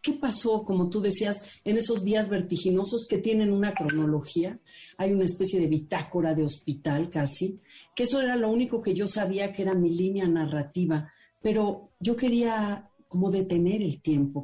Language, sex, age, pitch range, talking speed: Spanish, female, 40-59, 165-220 Hz, 170 wpm